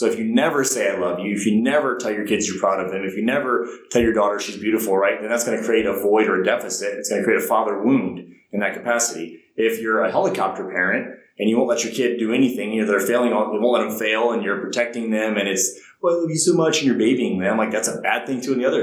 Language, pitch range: English, 100-120 Hz